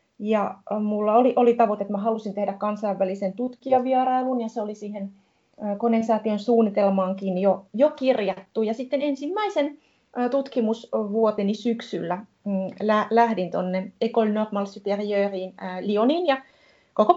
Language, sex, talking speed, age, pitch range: Finnish, female, 110 wpm, 30-49, 200-255 Hz